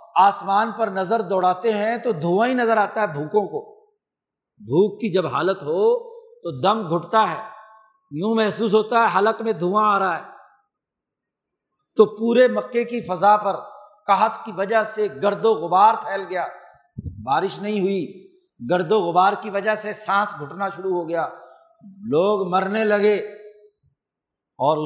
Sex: male